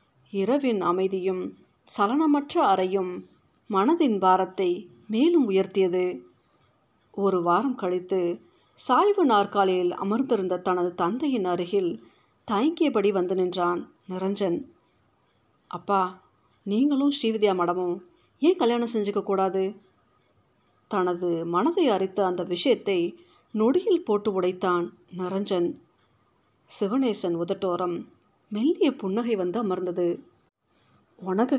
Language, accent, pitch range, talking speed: Tamil, native, 180-230 Hz, 85 wpm